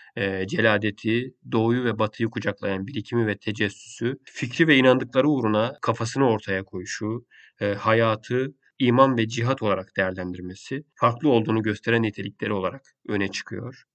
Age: 40-59